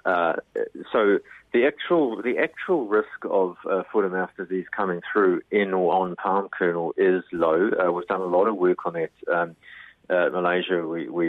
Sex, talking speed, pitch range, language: male, 190 wpm, 85-100 Hz, English